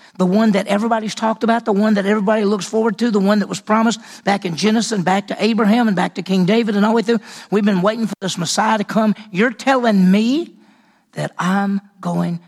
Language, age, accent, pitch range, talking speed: English, 50-69, American, 185-230 Hz, 235 wpm